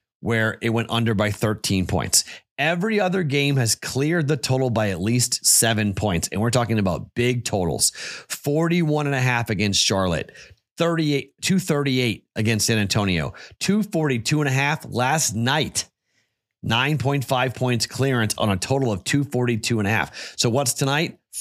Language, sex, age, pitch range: English, male, 30-49, 105-135 Hz